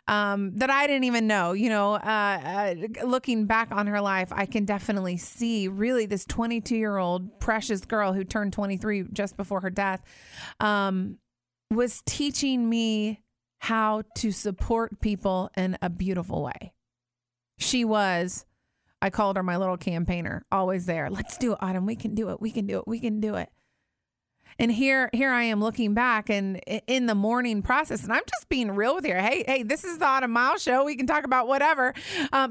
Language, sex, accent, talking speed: English, female, American, 190 wpm